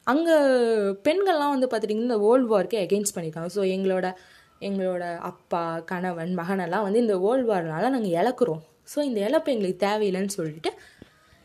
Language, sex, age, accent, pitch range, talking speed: Tamil, female, 20-39, native, 185-255 Hz, 140 wpm